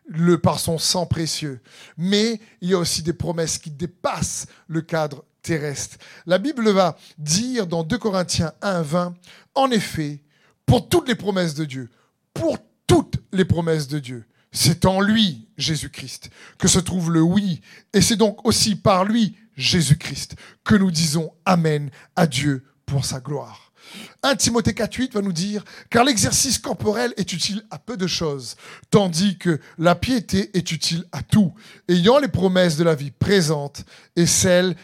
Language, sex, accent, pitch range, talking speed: French, male, French, 150-195 Hz, 165 wpm